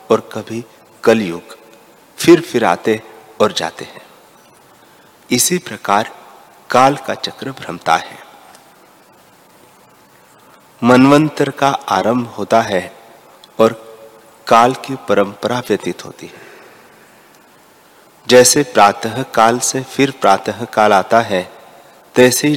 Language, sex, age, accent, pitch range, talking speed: Hindi, male, 40-59, native, 105-130 Hz, 100 wpm